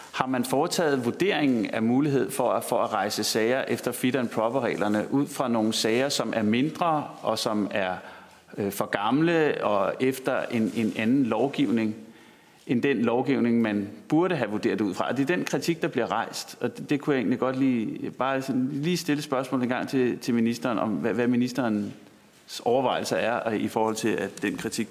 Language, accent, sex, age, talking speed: Danish, native, male, 30-49, 200 wpm